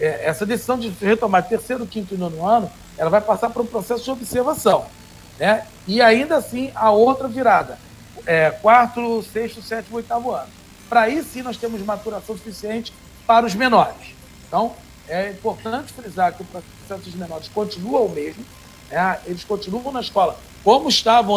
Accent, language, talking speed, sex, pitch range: Brazilian, Portuguese, 170 wpm, male, 185-235 Hz